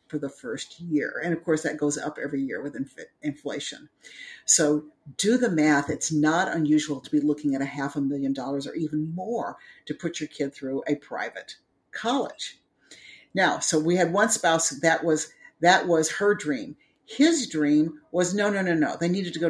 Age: 50-69